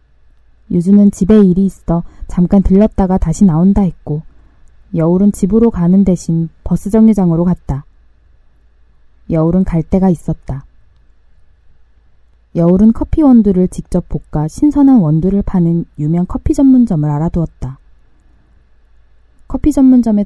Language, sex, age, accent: Korean, female, 20-39, native